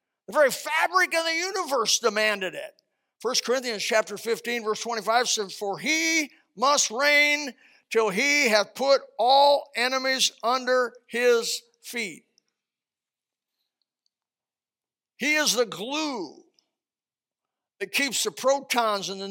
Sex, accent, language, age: male, American, English, 50-69